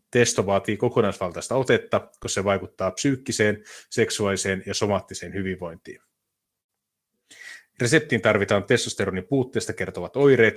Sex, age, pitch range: male, 30-49, 95-120 Hz